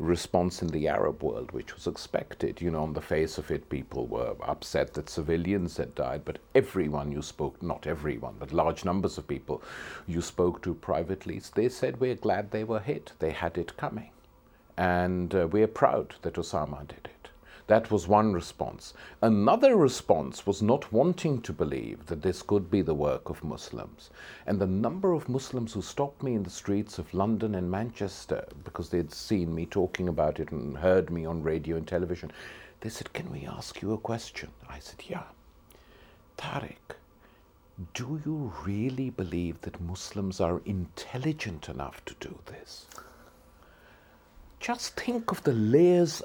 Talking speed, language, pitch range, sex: 175 wpm, English, 85-125 Hz, male